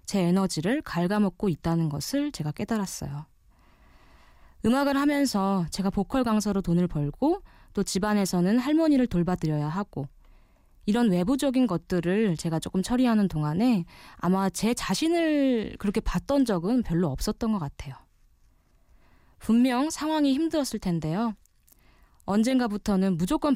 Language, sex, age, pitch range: Korean, female, 20-39, 170-240 Hz